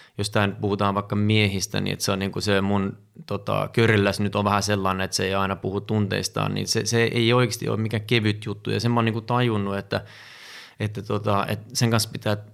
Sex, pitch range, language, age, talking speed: male, 100-115 Hz, Finnish, 20-39, 220 wpm